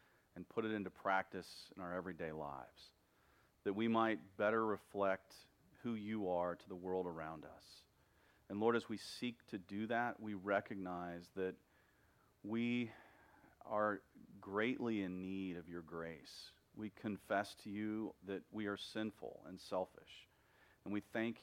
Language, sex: English, male